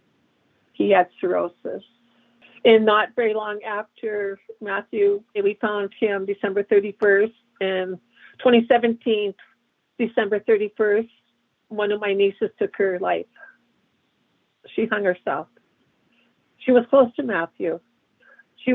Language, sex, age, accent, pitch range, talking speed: English, female, 50-69, American, 200-235 Hz, 110 wpm